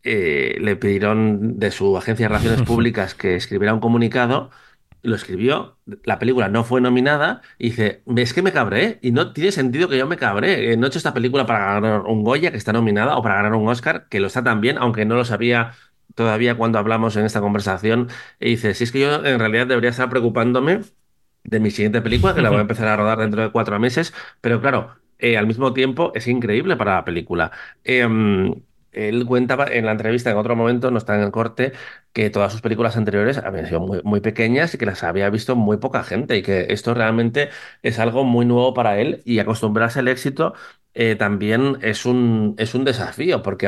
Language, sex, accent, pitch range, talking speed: Spanish, male, Spanish, 110-125 Hz, 215 wpm